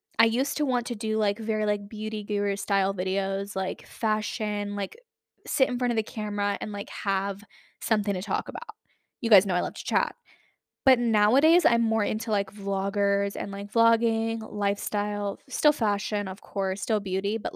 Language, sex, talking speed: English, female, 185 wpm